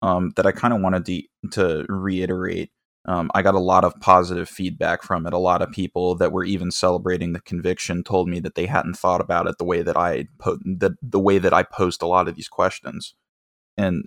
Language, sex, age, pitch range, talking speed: English, male, 20-39, 90-100 Hz, 230 wpm